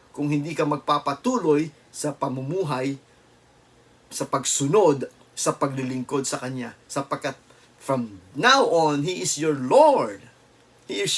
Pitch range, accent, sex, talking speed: 125-195 Hz, Filipino, male, 120 wpm